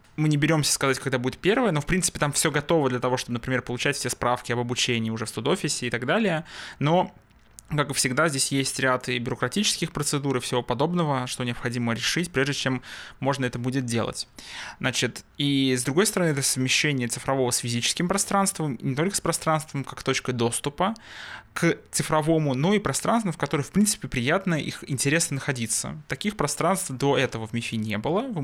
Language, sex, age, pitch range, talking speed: Russian, male, 20-39, 120-155 Hz, 190 wpm